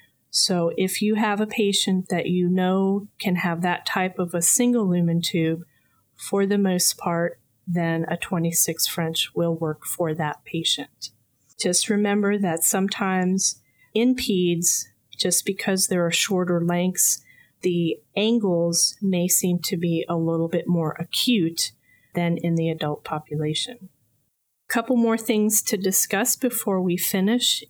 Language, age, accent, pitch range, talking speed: English, 30-49, American, 165-195 Hz, 145 wpm